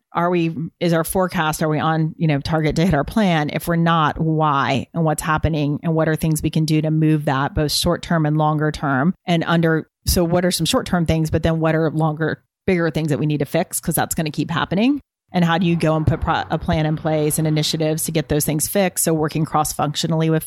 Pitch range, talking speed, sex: 155-170 Hz, 260 wpm, female